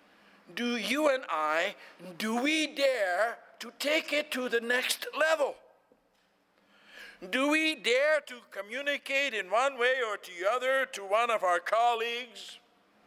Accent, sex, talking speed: American, male, 140 wpm